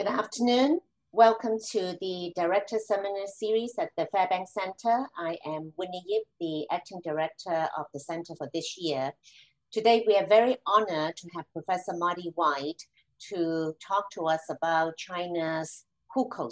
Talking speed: 155 wpm